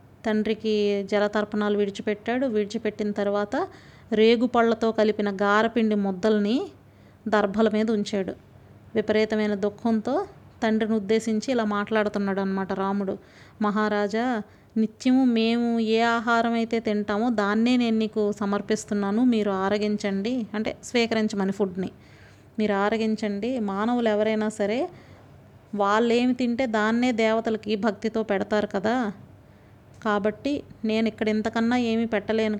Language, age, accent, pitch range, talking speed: Telugu, 30-49, native, 205-230 Hz, 100 wpm